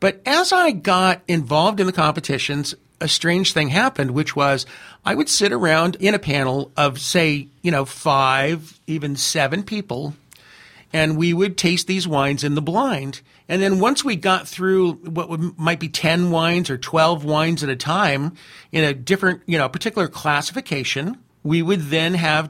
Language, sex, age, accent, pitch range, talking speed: English, male, 50-69, American, 145-185 Hz, 180 wpm